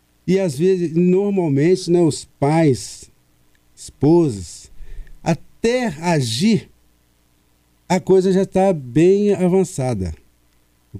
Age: 50-69